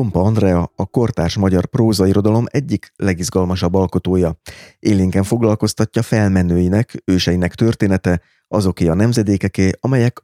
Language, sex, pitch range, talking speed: Hungarian, male, 90-105 Hz, 100 wpm